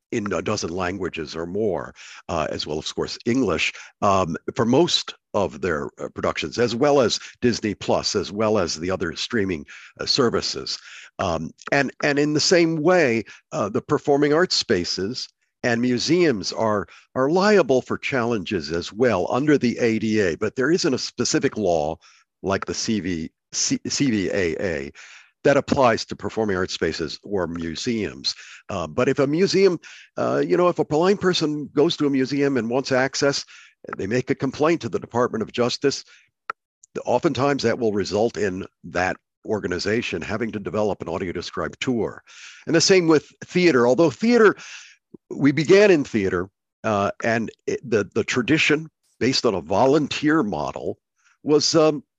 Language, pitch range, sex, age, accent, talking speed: English, 120-160 Hz, male, 50-69, American, 160 wpm